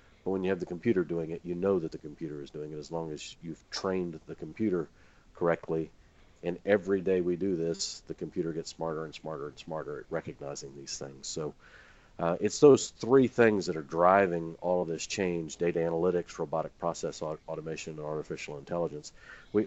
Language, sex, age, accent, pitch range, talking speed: English, male, 50-69, American, 80-95 Hz, 200 wpm